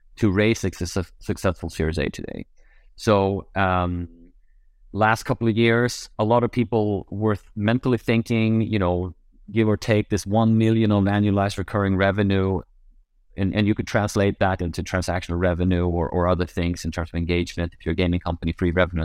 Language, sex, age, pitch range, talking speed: English, male, 30-49, 90-110 Hz, 175 wpm